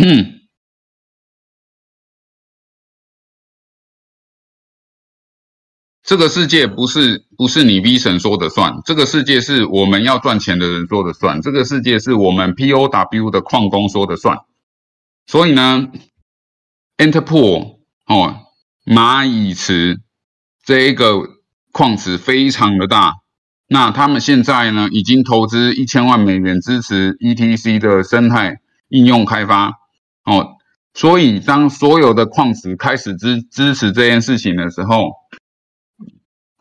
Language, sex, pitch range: Chinese, male, 100-130 Hz